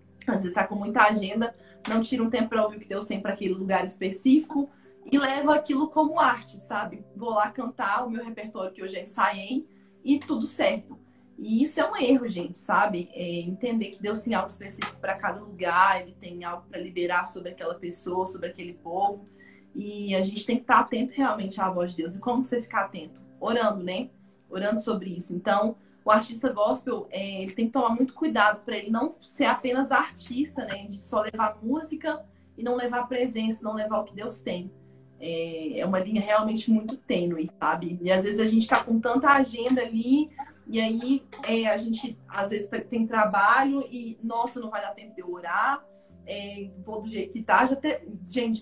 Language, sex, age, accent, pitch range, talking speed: Portuguese, female, 20-39, Brazilian, 190-245 Hz, 205 wpm